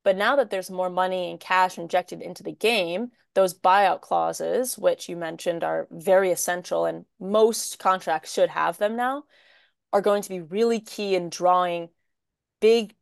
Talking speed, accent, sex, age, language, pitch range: 170 wpm, American, female, 20-39, English, 180-220 Hz